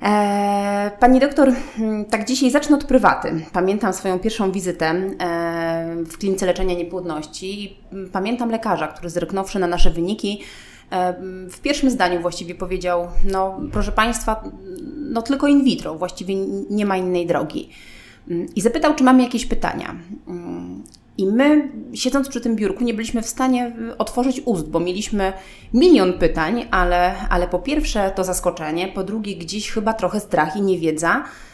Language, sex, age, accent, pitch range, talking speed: Polish, female, 30-49, native, 175-235 Hz, 145 wpm